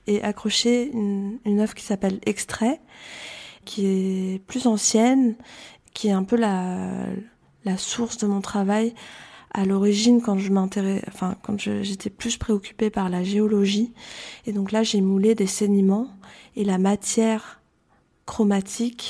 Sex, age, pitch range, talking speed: female, 20-39, 190-215 Hz, 150 wpm